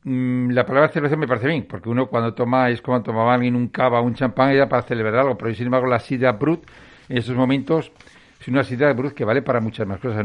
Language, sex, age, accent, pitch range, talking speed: Spanish, male, 60-79, Spanish, 115-135 Hz, 240 wpm